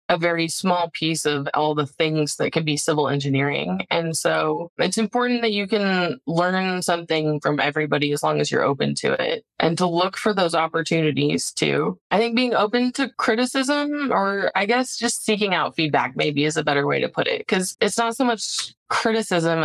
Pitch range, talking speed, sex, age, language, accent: 155-215 Hz, 200 wpm, female, 20-39, English, American